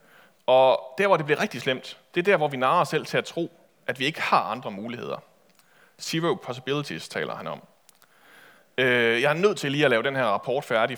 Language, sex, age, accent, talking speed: Danish, male, 30-49, native, 220 wpm